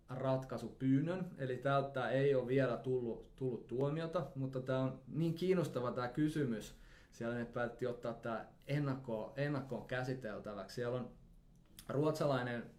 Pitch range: 115-140 Hz